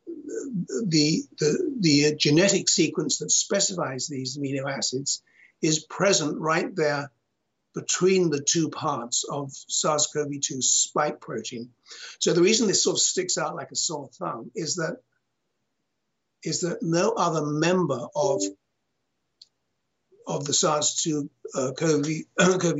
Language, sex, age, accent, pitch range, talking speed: English, male, 60-79, British, 145-185 Hz, 120 wpm